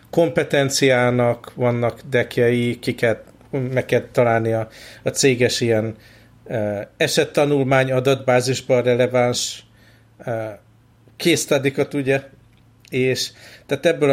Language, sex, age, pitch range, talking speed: Hungarian, male, 50-69, 115-135 Hz, 90 wpm